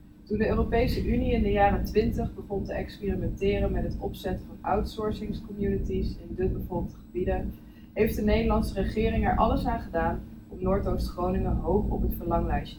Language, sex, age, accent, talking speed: Dutch, female, 20-39, Dutch, 170 wpm